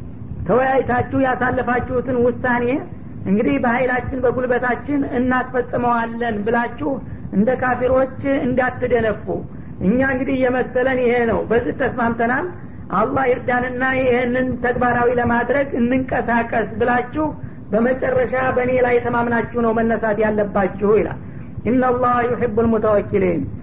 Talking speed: 90 wpm